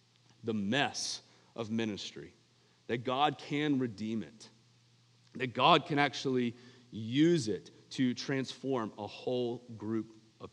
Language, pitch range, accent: English, 115-155 Hz, American